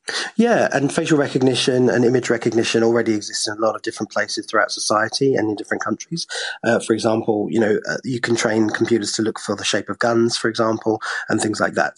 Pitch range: 105-120 Hz